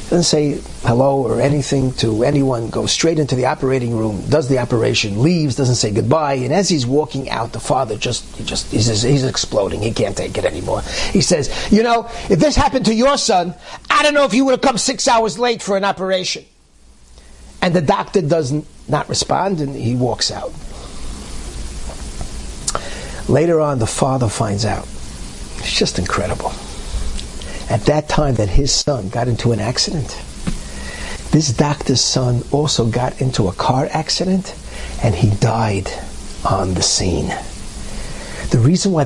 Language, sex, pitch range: English, male, 110-155 Hz